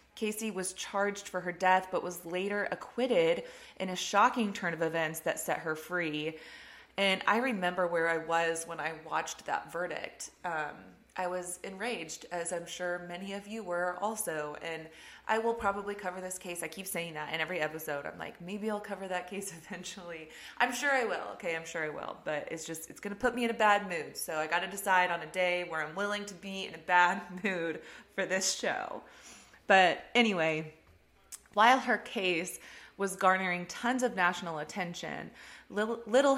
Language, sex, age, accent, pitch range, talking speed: English, female, 20-39, American, 170-205 Hz, 195 wpm